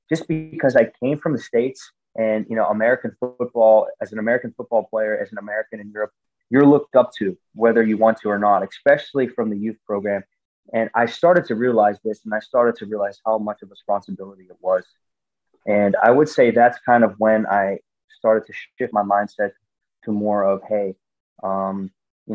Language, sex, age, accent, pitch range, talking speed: English, male, 20-39, American, 100-115 Hz, 200 wpm